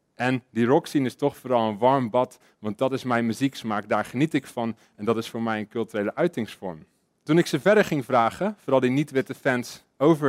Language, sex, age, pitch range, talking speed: Dutch, male, 30-49, 120-160 Hz, 215 wpm